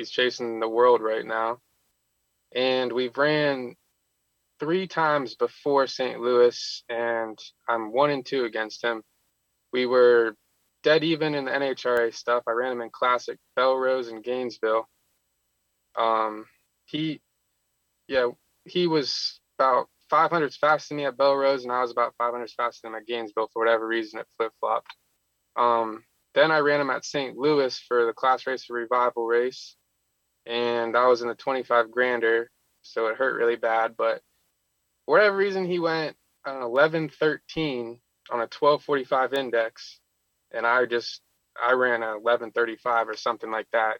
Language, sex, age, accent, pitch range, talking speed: English, male, 20-39, American, 115-135 Hz, 155 wpm